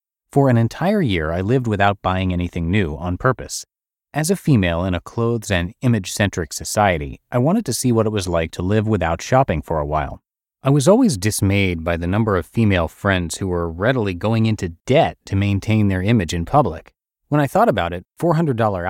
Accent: American